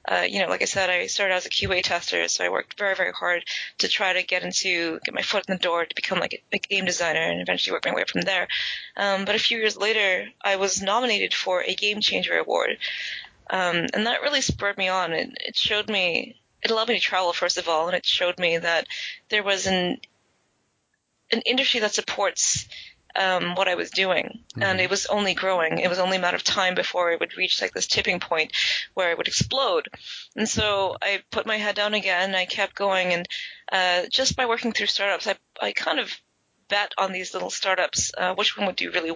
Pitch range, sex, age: 185-210 Hz, female, 20-39